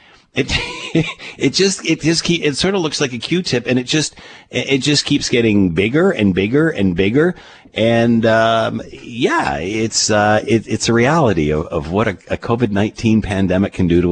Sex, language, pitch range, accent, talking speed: male, English, 90-120 Hz, American, 185 wpm